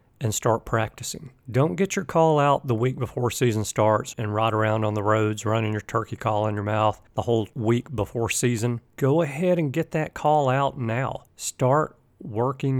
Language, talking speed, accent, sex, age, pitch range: English, 190 wpm, American, male, 40-59, 110-145 Hz